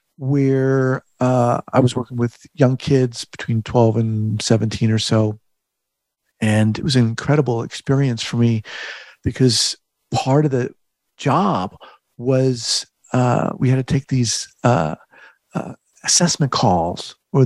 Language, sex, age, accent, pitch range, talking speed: English, male, 50-69, American, 125-185 Hz, 135 wpm